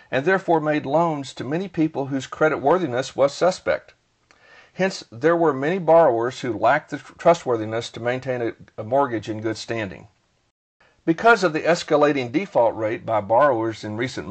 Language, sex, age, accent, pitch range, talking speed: English, male, 50-69, American, 115-155 Hz, 155 wpm